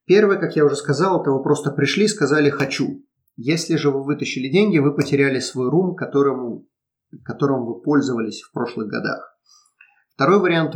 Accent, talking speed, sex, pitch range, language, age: native, 155 wpm, male, 125-165 Hz, Russian, 30-49